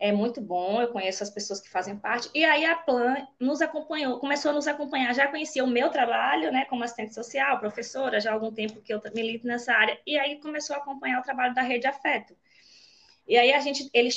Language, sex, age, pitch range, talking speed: Portuguese, female, 20-39, 210-275 Hz, 235 wpm